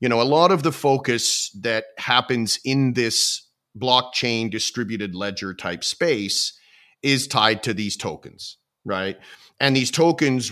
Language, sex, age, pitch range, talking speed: English, male, 40-59, 110-140 Hz, 145 wpm